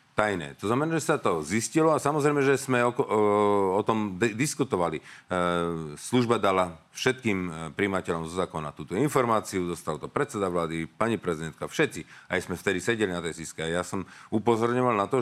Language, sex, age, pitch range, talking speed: Slovak, male, 40-59, 95-130 Hz, 175 wpm